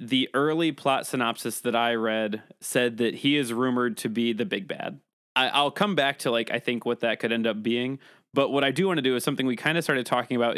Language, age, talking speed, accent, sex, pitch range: English, 20-39, 255 wpm, American, male, 115-135 Hz